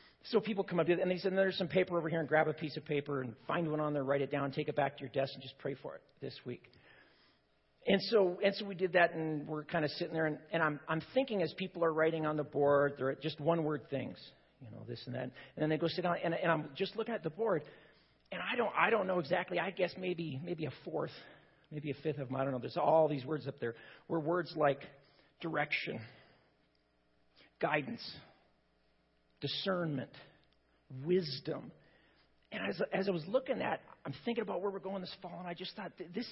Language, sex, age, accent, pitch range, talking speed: English, male, 40-59, American, 155-200 Hz, 235 wpm